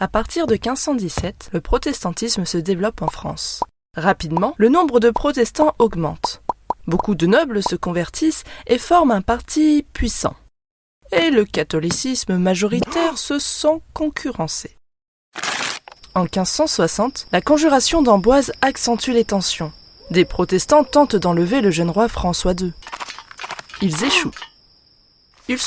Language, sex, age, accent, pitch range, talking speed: French, female, 20-39, French, 195-290 Hz, 125 wpm